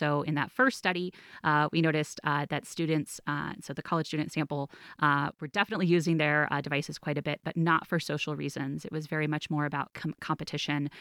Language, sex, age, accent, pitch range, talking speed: English, female, 20-39, American, 150-175 Hz, 215 wpm